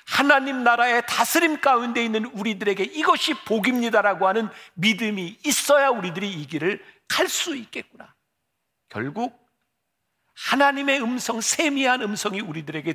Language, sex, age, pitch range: Korean, male, 50-69, 150-245 Hz